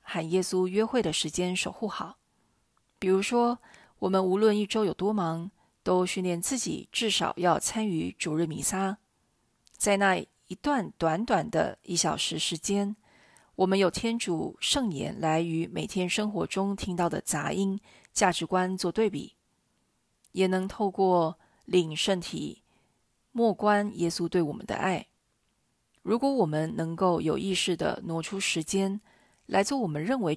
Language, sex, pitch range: Chinese, female, 170-205 Hz